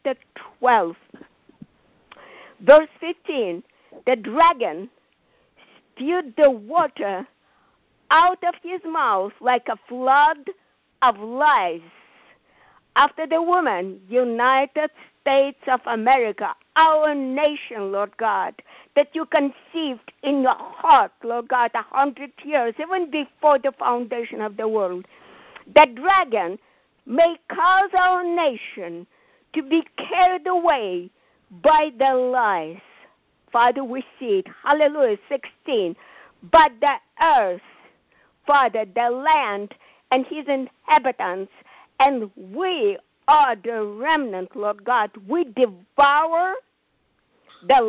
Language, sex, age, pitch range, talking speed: English, female, 50-69, 240-325 Hz, 105 wpm